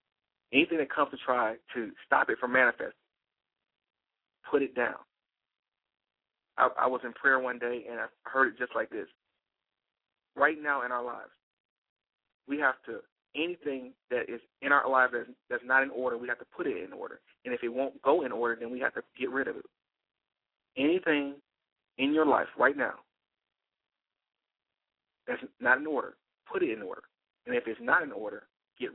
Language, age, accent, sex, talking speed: English, 40-59, American, male, 185 wpm